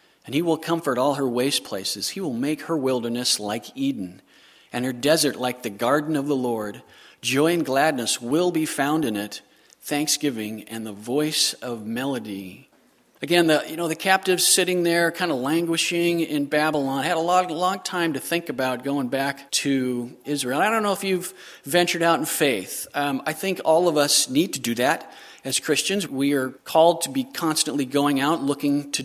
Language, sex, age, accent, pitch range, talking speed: English, male, 50-69, American, 140-175 Hz, 195 wpm